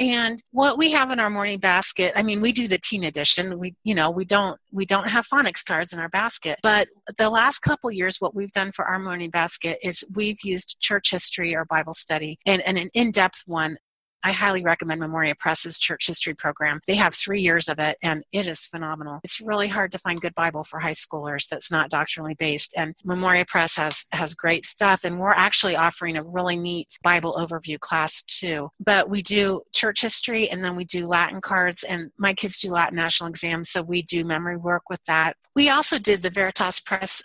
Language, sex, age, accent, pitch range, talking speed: English, female, 30-49, American, 165-200 Hz, 215 wpm